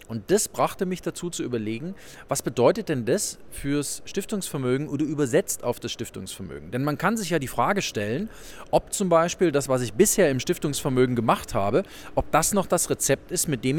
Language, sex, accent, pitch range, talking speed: German, male, German, 125-180 Hz, 195 wpm